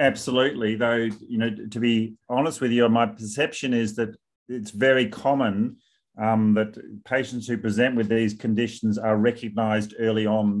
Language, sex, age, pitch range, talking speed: English, male, 40-59, 110-130 Hz, 160 wpm